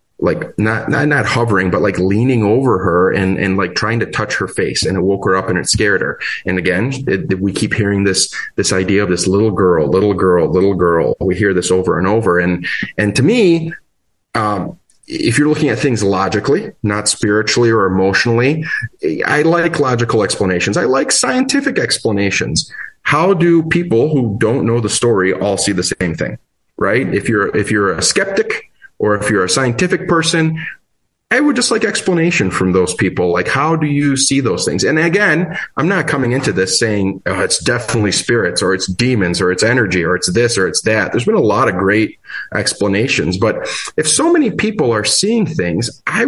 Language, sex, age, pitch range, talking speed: English, male, 30-49, 95-150 Hz, 200 wpm